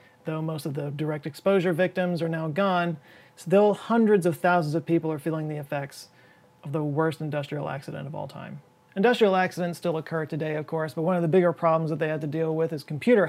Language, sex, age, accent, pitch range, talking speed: English, male, 30-49, American, 160-205 Hz, 220 wpm